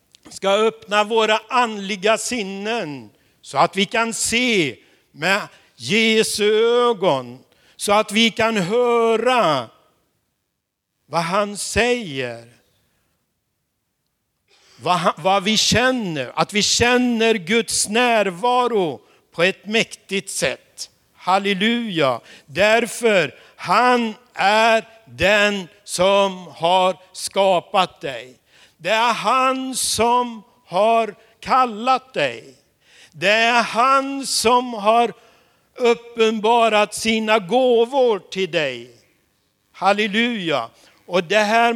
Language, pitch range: Swedish, 185-230 Hz